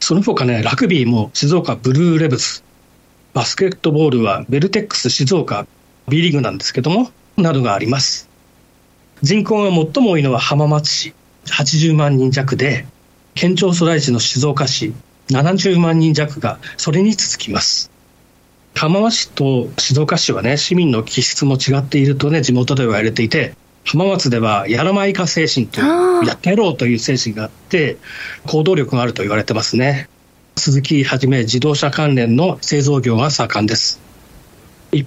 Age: 40-59